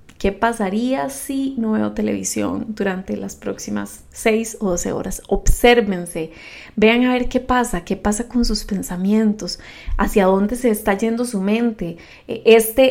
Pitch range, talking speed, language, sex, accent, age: 190-225 Hz, 150 wpm, Spanish, female, Colombian, 20-39